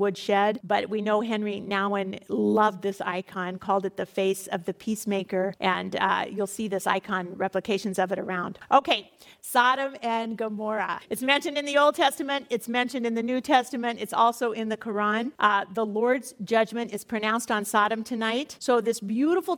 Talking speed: 180 wpm